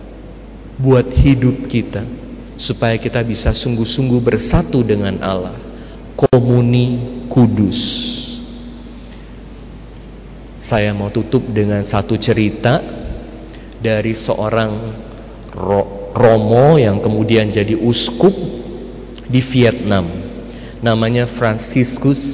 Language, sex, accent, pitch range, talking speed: Indonesian, male, native, 110-130 Hz, 80 wpm